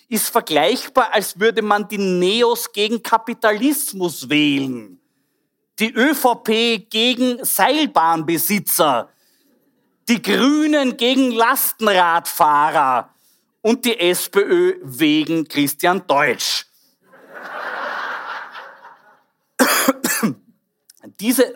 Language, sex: German, male